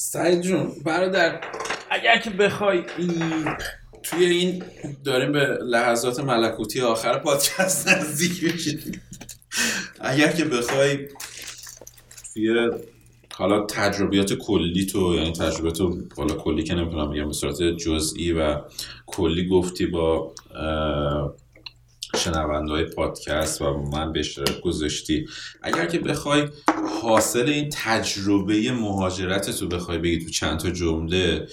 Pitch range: 85-120 Hz